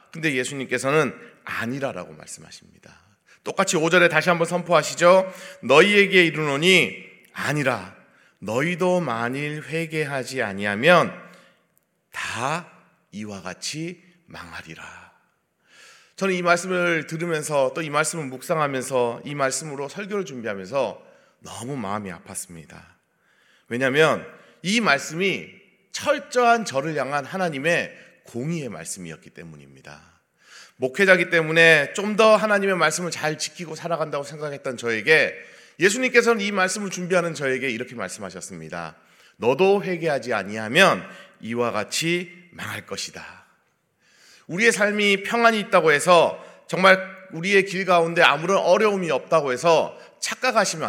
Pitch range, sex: 135-195 Hz, male